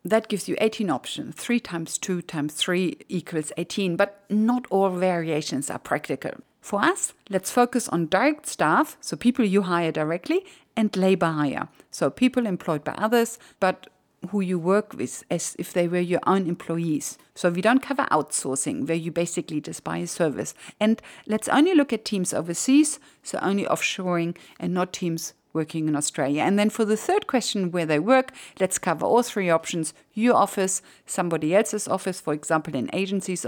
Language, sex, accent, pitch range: English, female, German, 175-230 Hz